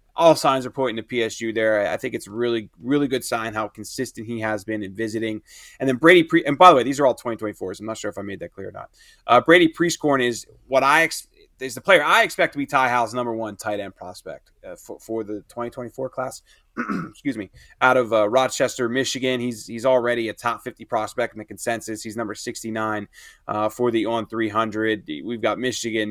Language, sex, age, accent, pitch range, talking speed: English, male, 20-39, American, 110-130 Hz, 225 wpm